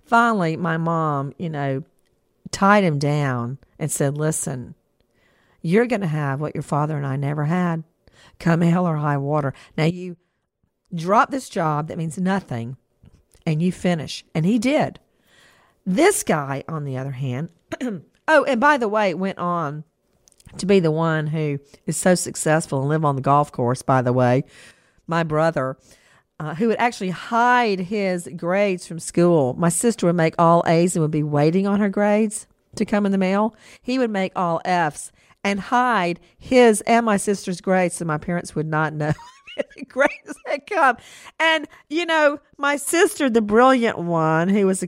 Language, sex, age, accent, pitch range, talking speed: English, female, 50-69, American, 155-215 Hz, 180 wpm